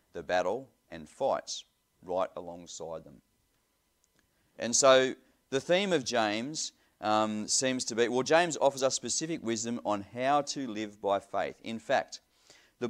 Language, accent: English, Australian